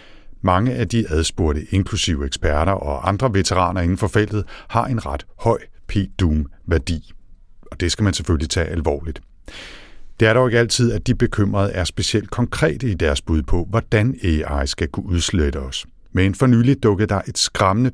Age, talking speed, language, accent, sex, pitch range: 60-79, 175 wpm, Danish, native, male, 80-105 Hz